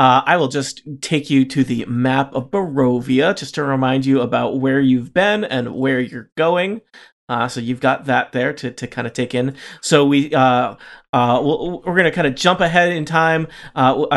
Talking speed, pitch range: 210 wpm, 130-165 Hz